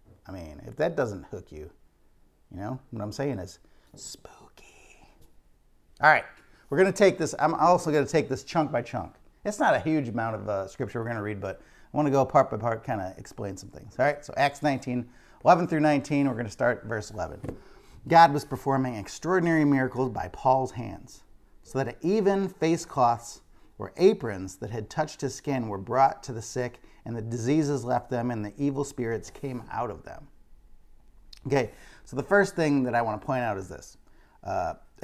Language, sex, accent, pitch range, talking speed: English, male, American, 115-145 Hz, 205 wpm